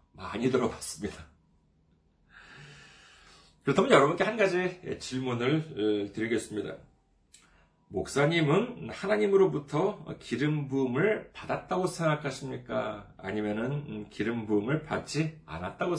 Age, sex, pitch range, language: 40-59, male, 105-175 Hz, Korean